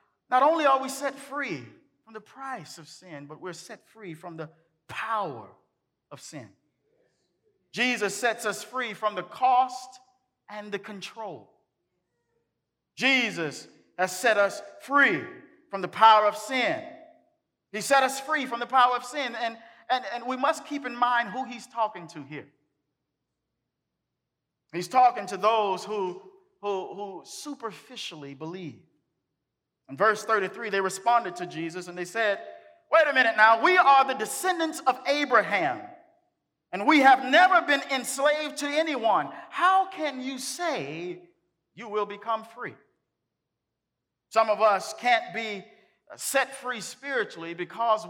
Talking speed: 145 wpm